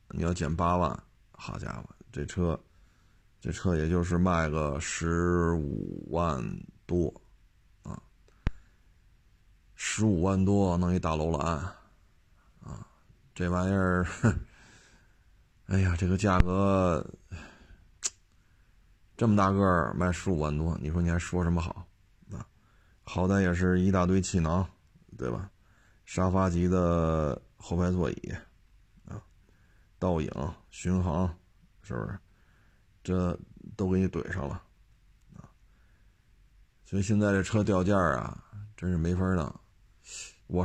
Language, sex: Chinese, male